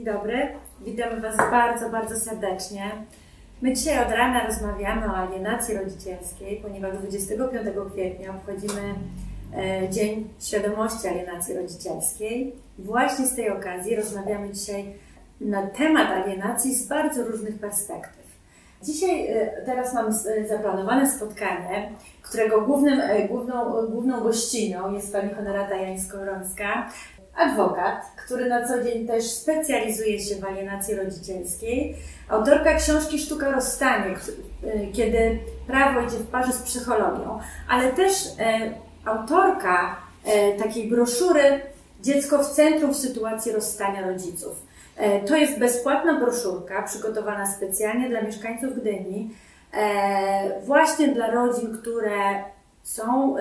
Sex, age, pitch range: female, 30-49, 200-245 Hz